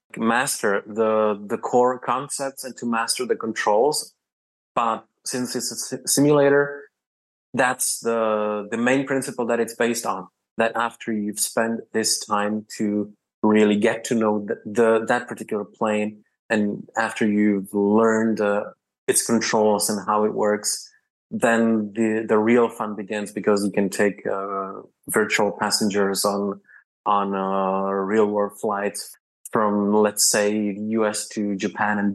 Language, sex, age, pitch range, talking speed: English, male, 20-39, 105-125 Hz, 145 wpm